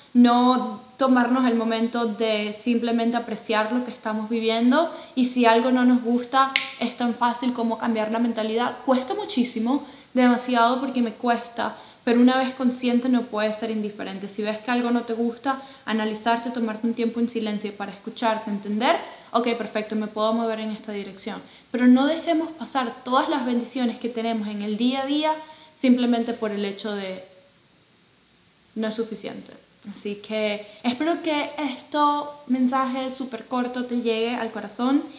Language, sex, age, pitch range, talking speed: Spanish, female, 10-29, 215-250 Hz, 165 wpm